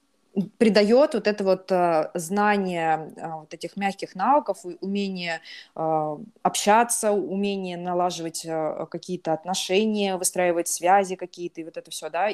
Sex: female